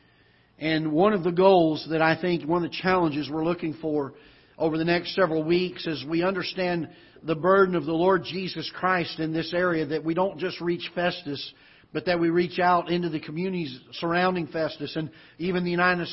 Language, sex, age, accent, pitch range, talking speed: English, male, 50-69, American, 145-175 Hz, 195 wpm